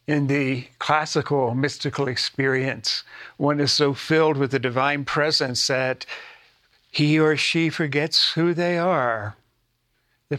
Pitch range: 130-155 Hz